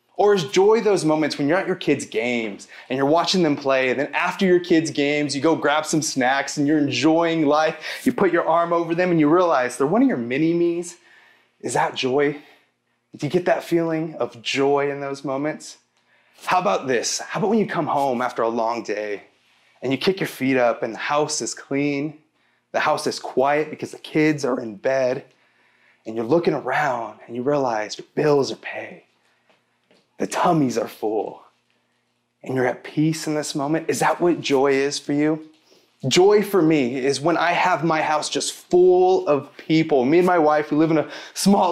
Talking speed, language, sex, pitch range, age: 205 wpm, English, male, 145-195 Hz, 20-39